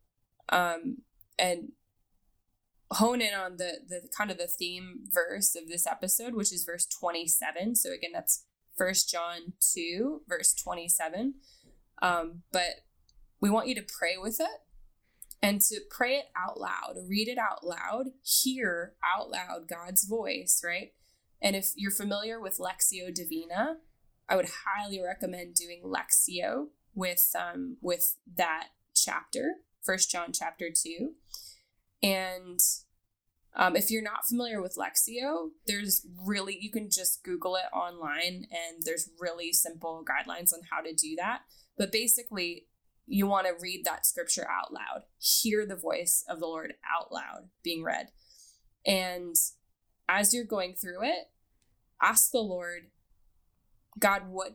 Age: 10-29